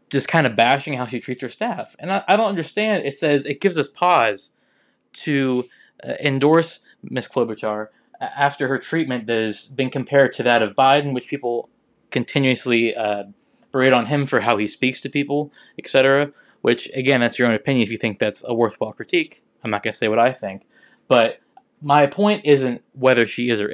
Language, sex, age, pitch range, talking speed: English, male, 20-39, 115-155 Hz, 200 wpm